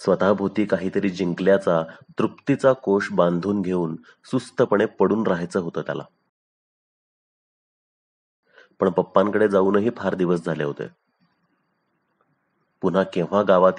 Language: Marathi